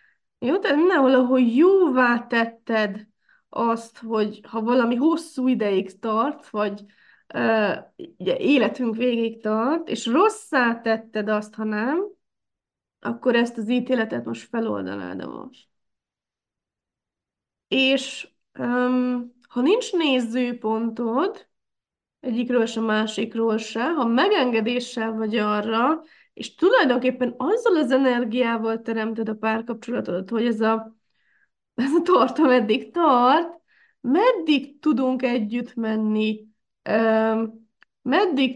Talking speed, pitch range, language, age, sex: 105 wpm, 225-255 Hz, Hungarian, 20-39, female